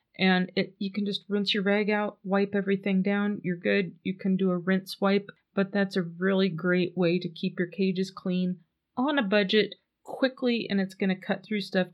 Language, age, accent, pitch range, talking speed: English, 30-49, American, 180-205 Hz, 210 wpm